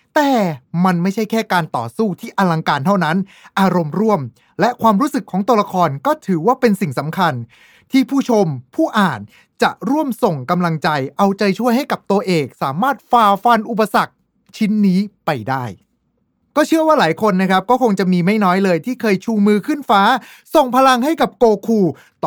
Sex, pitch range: male, 150-225 Hz